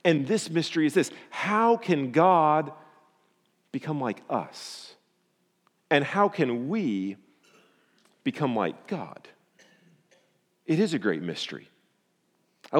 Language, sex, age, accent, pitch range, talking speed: English, male, 40-59, American, 145-205 Hz, 115 wpm